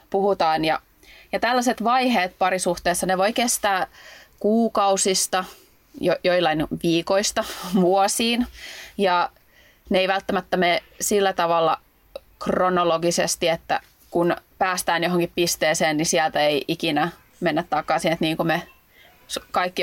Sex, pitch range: female, 165-195 Hz